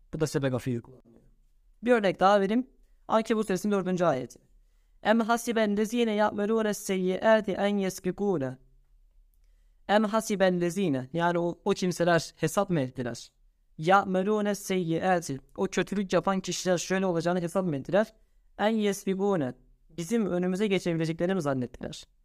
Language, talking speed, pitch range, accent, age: Turkish, 115 wpm, 155-205 Hz, native, 20-39